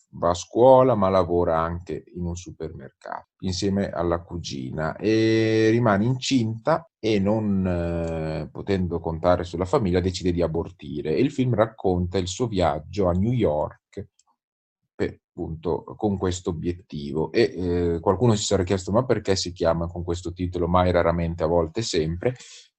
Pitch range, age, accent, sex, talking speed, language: 85-100 Hz, 30-49, native, male, 155 wpm, Italian